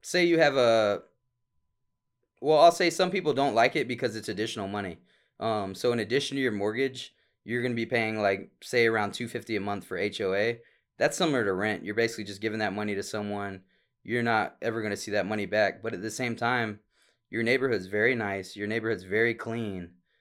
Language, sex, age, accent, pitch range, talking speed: English, male, 20-39, American, 100-120 Hz, 210 wpm